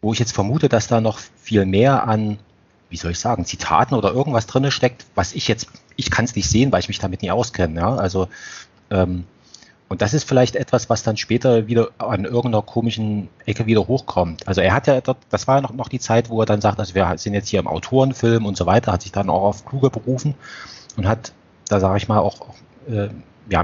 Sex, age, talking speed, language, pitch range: male, 30-49, 235 wpm, German, 95-120 Hz